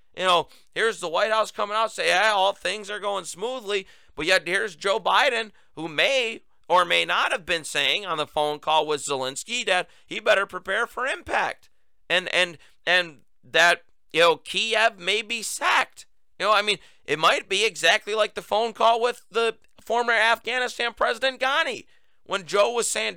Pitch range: 160-220 Hz